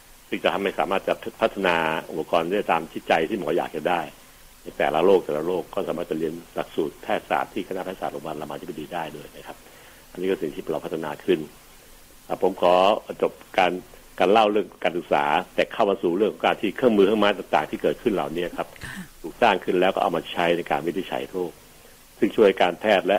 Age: 60-79